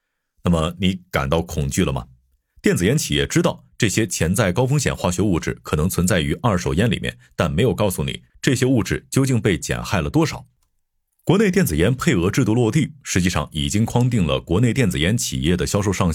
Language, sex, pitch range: Chinese, male, 75-120 Hz